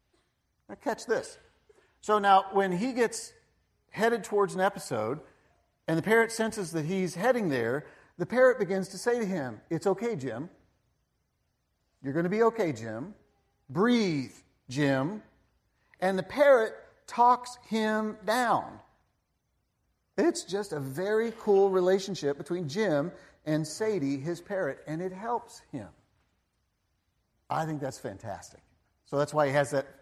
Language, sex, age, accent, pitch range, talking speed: English, male, 50-69, American, 135-210 Hz, 140 wpm